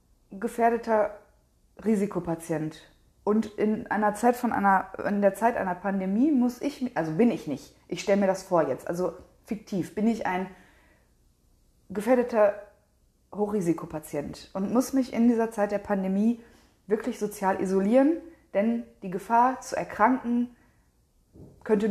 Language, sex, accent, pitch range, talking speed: German, female, German, 180-235 Hz, 135 wpm